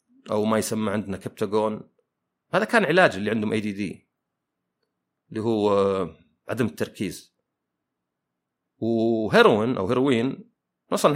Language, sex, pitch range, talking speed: Arabic, male, 95-130 Hz, 100 wpm